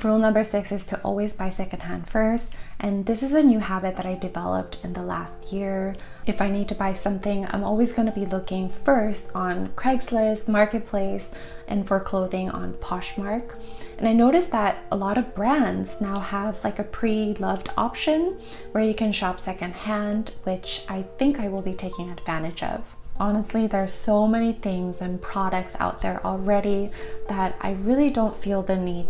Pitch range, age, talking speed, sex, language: 185-220 Hz, 20-39, 180 wpm, female, English